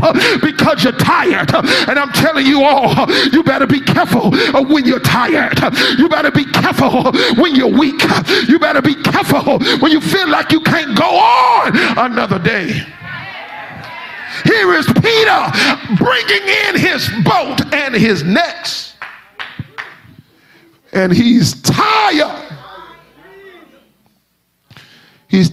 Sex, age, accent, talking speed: male, 40-59, American, 120 wpm